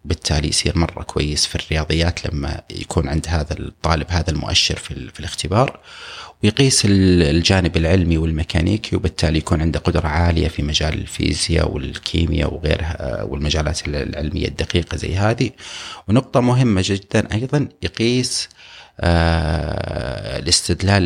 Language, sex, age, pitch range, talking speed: Arabic, male, 30-49, 80-100 Hz, 115 wpm